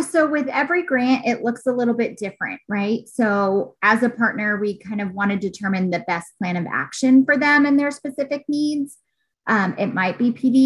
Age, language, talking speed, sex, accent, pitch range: 20-39, English, 210 wpm, female, American, 185-230 Hz